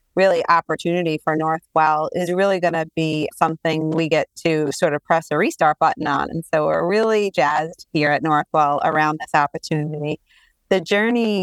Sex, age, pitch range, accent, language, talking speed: female, 30-49, 155-185 Hz, American, English, 175 wpm